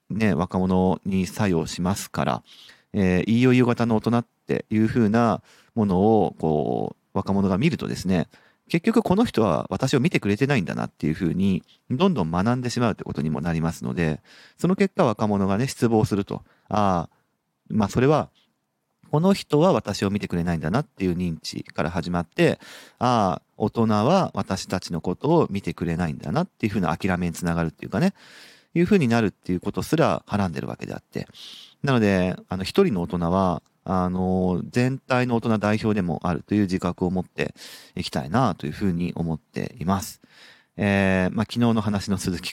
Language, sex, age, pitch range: Japanese, male, 40-59, 90-115 Hz